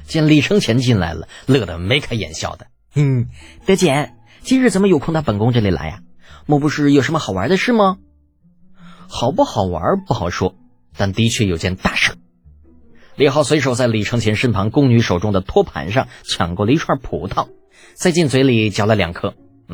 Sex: male